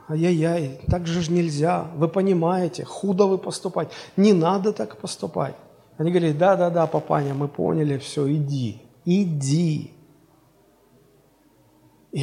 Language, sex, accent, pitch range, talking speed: Russian, male, native, 155-220 Hz, 120 wpm